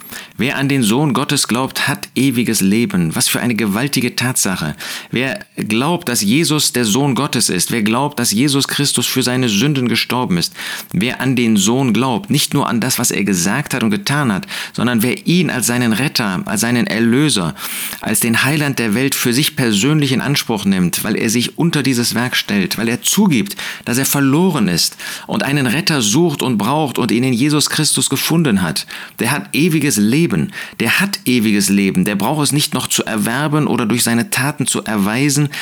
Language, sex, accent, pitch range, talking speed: German, male, German, 120-155 Hz, 195 wpm